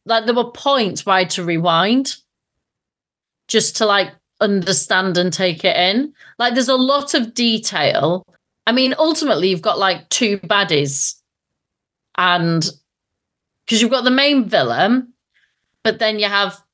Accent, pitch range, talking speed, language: British, 175-230 Hz, 145 wpm, English